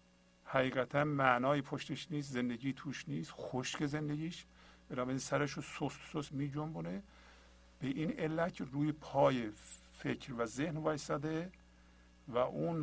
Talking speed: 115 wpm